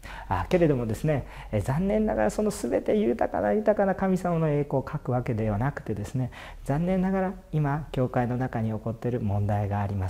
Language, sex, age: Japanese, male, 40-59